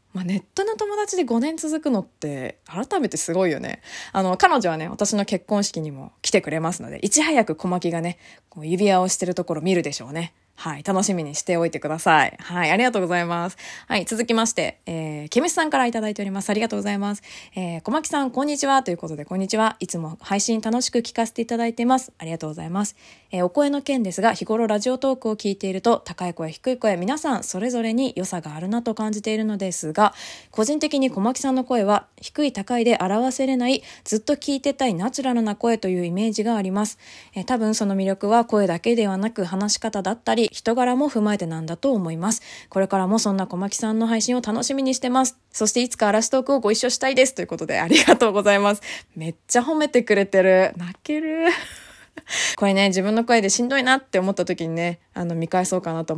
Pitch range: 180-245 Hz